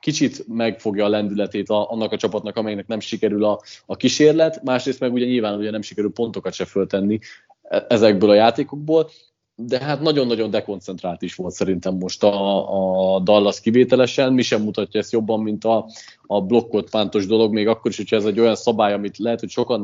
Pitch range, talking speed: 100-125 Hz, 185 wpm